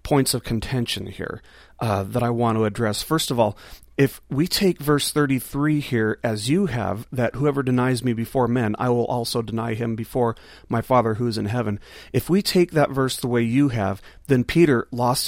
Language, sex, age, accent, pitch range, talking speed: English, male, 40-59, American, 115-145 Hz, 205 wpm